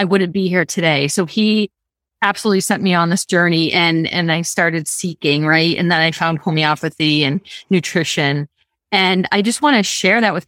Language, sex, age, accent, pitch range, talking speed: English, female, 30-49, American, 170-205 Hz, 195 wpm